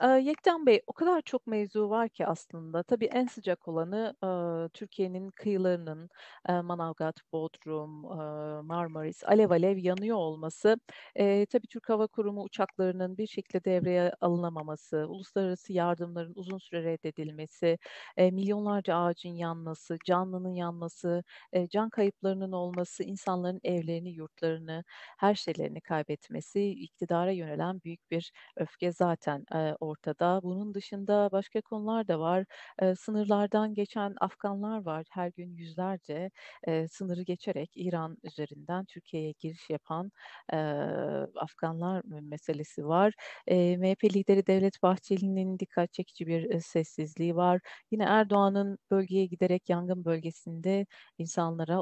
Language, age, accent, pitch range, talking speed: Turkish, 40-59, native, 165-200 Hz, 110 wpm